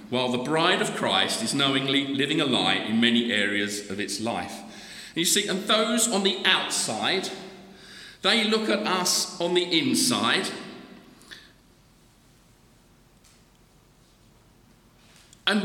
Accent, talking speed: British, 120 wpm